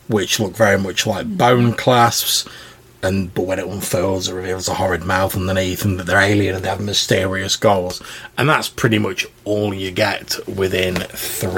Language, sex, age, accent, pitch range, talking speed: English, male, 30-49, British, 100-120 Hz, 180 wpm